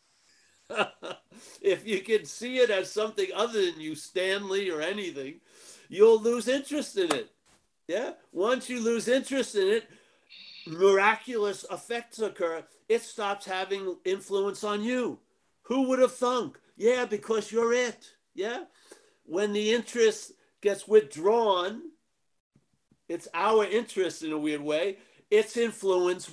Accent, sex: American, male